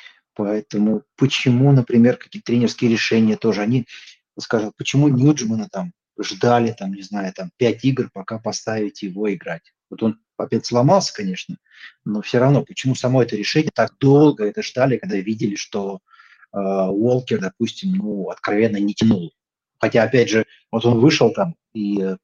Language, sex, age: Russian, male, 30-49